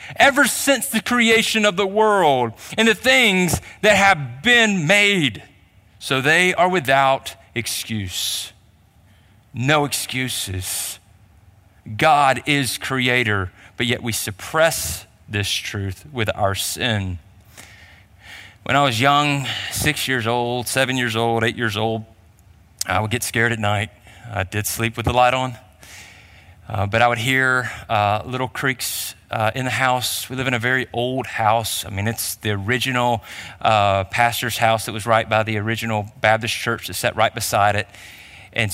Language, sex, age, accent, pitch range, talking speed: English, male, 30-49, American, 100-125 Hz, 155 wpm